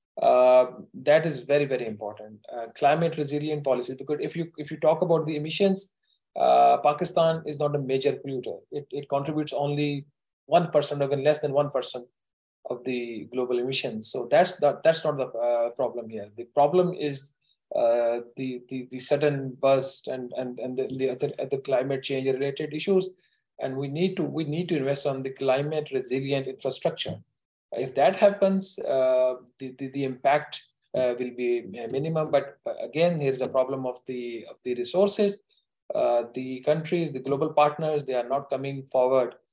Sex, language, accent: male, English, Indian